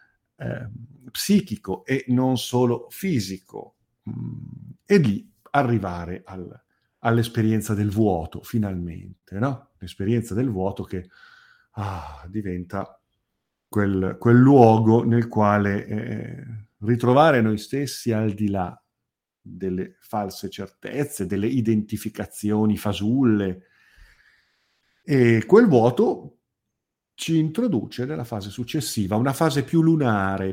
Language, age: Italian, 50-69